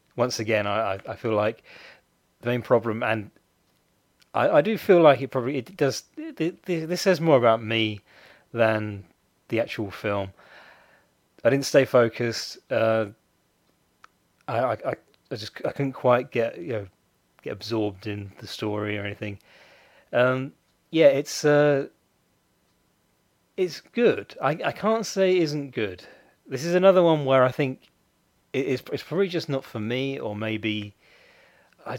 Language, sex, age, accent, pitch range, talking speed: English, male, 30-49, British, 105-140 Hz, 150 wpm